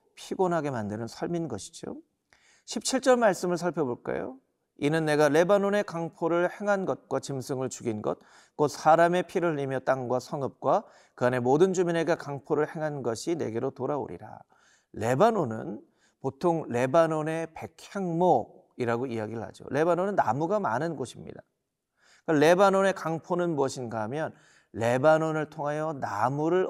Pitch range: 135-185 Hz